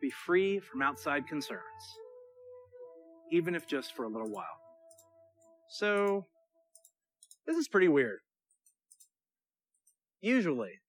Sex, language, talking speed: male, Bulgarian, 100 wpm